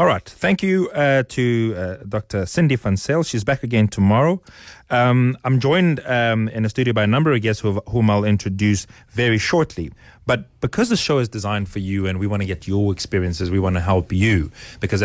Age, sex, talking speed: 30-49, male, 210 wpm